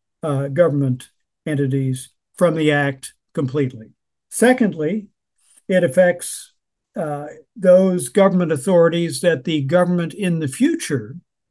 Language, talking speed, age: English, 105 wpm, 50-69